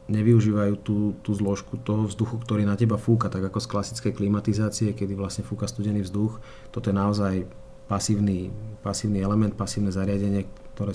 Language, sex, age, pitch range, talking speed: Slovak, male, 30-49, 95-105 Hz, 160 wpm